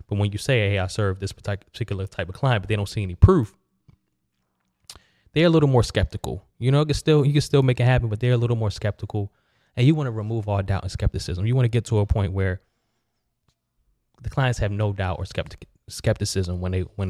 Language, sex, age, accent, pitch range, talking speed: English, male, 20-39, American, 95-115 Hz, 240 wpm